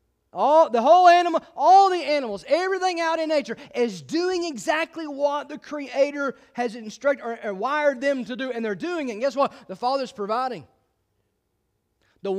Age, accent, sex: 30-49, American, male